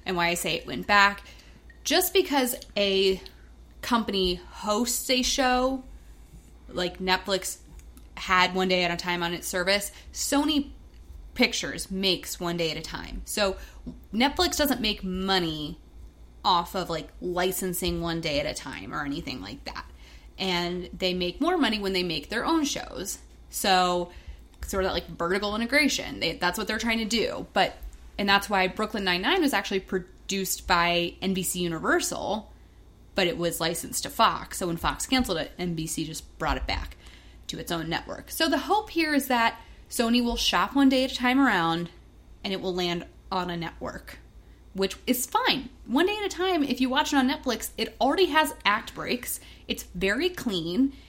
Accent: American